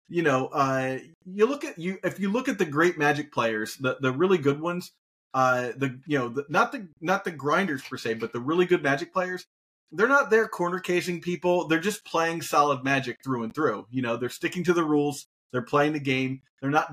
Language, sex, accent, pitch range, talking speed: English, male, American, 130-165 Hz, 230 wpm